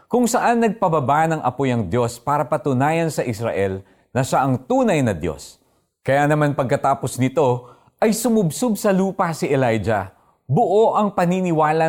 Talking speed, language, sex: 150 wpm, Filipino, male